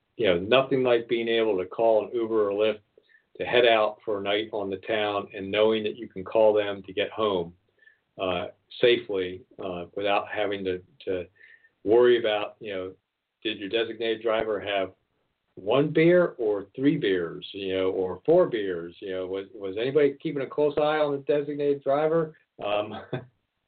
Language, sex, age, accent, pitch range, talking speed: English, male, 50-69, American, 100-145 Hz, 180 wpm